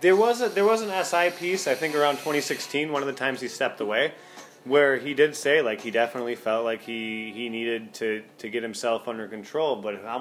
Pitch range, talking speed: 115-150 Hz, 230 wpm